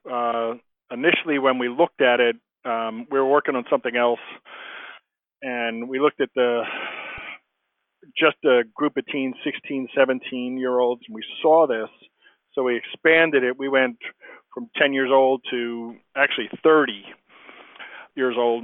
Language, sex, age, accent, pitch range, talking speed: English, male, 40-59, American, 120-155 Hz, 150 wpm